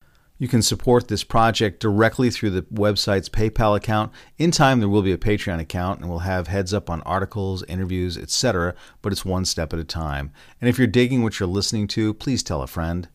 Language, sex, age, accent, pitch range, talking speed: English, male, 40-59, American, 90-115 Hz, 215 wpm